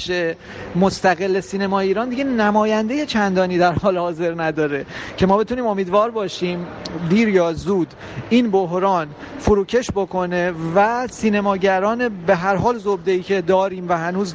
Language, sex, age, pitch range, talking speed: Persian, male, 30-49, 175-215 Hz, 135 wpm